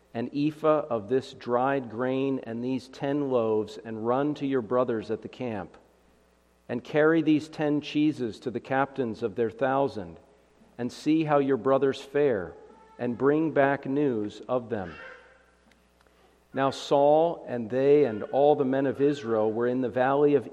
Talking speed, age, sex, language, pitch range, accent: 165 wpm, 50-69, male, English, 110-145 Hz, American